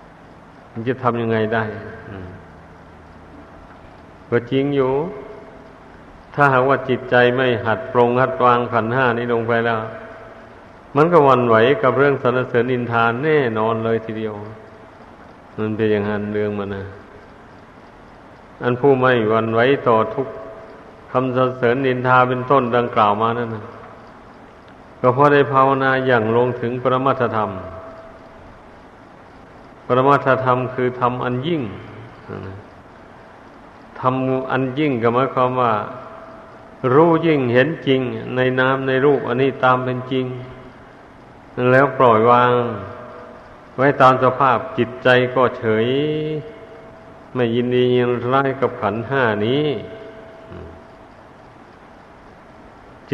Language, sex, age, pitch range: Thai, male, 60-79, 110-130 Hz